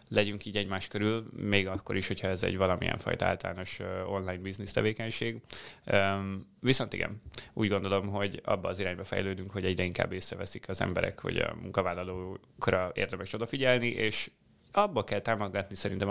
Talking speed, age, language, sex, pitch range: 160 wpm, 30-49, Hungarian, male, 95-110 Hz